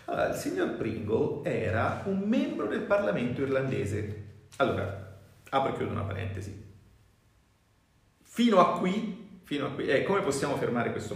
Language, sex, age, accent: Italian, male, 40-59, native